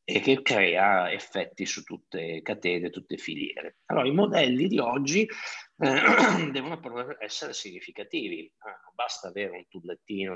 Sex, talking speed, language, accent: male, 125 wpm, Italian, native